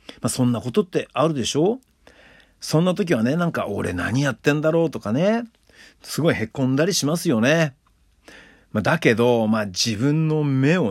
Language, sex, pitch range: Japanese, male, 115-185 Hz